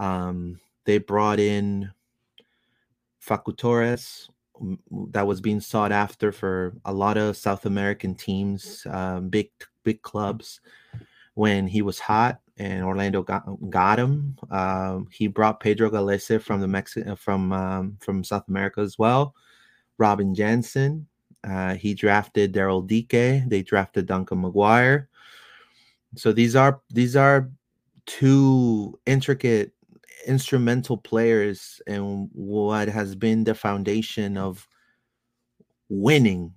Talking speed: 120 wpm